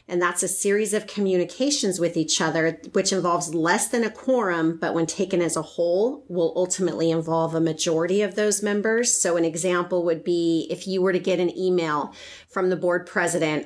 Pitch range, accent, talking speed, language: 165-195 Hz, American, 200 wpm, English